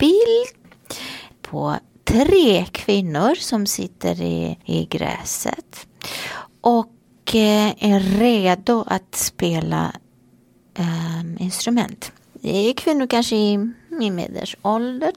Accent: native